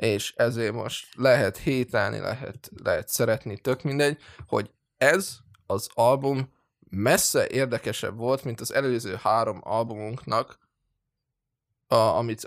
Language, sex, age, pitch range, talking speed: Hungarian, male, 20-39, 115-140 Hz, 110 wpm